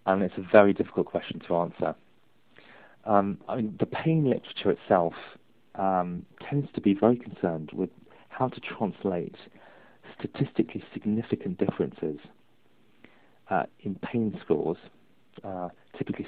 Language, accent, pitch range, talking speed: English, British, 90-120 Hz, 120 wpm